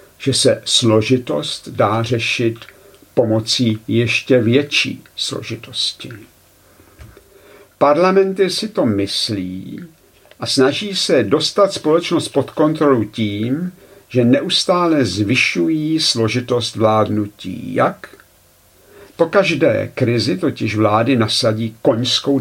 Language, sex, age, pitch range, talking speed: Czech, male, 50-69, 110-150 Hz, 90 wpm